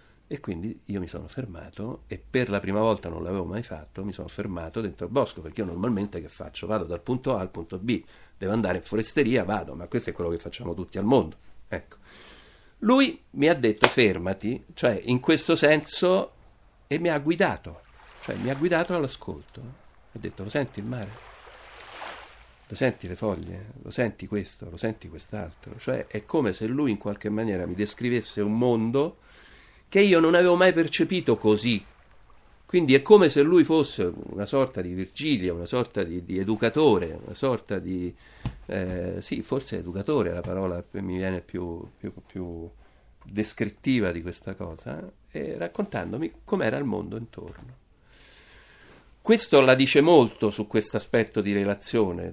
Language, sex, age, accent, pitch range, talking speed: Italian, male, 60-79, native, 95-125 Hz, 175 wpm